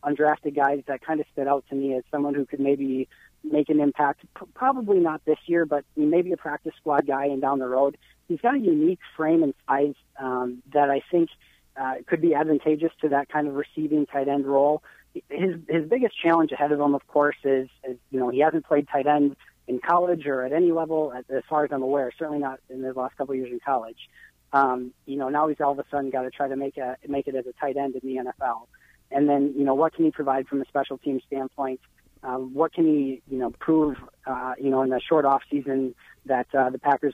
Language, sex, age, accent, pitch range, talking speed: English, male, 30-49, American, 135-155 Hz, 240 wpm